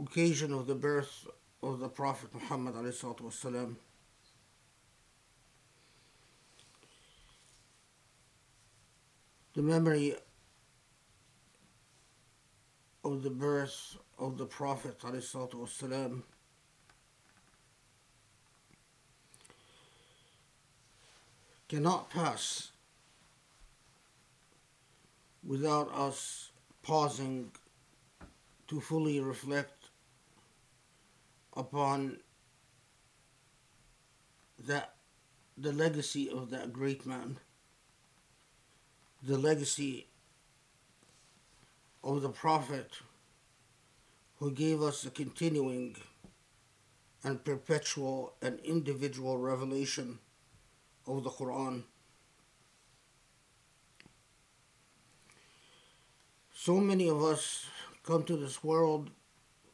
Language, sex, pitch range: English, male, 125-145 Hz